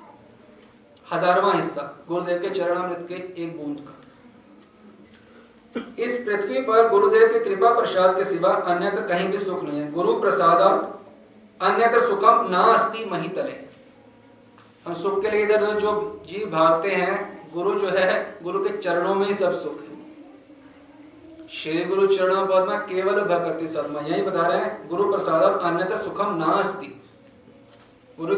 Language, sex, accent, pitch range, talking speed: Hindi, male, native, 175-225 Hz, 135 wpm